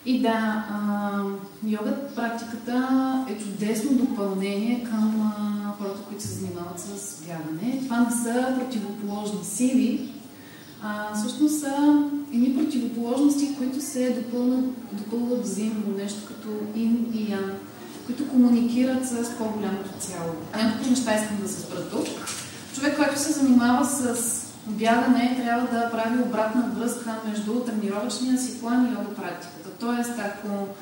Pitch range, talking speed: 200-245 Hz, 130 wpm